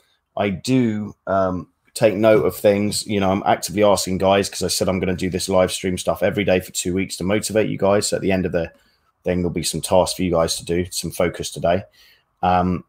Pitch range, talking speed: 85-105 Hz, 245 wpm